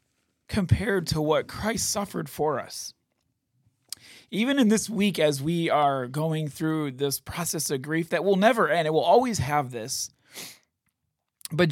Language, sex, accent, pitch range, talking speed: English, male, American, 135-175 Hz, 155 wpm